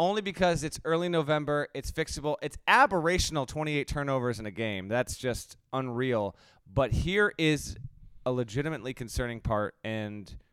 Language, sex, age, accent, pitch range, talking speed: English, male, 30-49, American, 110-140 Hz, 135 wpm